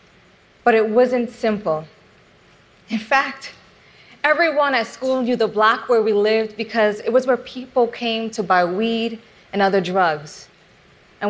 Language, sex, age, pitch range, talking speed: Russian, female, 30-49, 200-245 Hz, 150 wpm